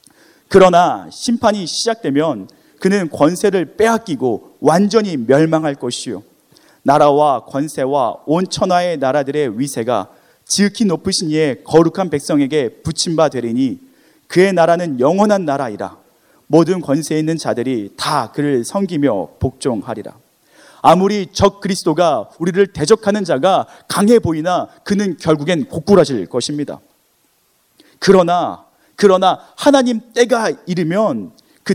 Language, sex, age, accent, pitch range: Korean, male, 30-49, native, 155-210 Hz